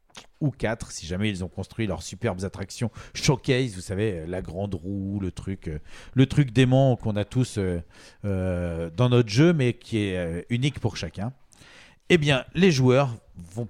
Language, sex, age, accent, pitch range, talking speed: French, male, 50-69, French, 100-130 Hz, 165 wpm